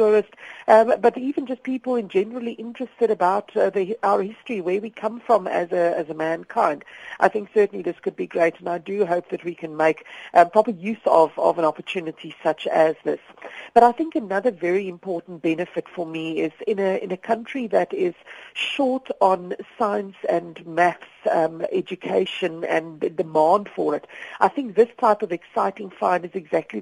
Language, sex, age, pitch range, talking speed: English, female, 50-69, 175-225 Hz, 190 wpm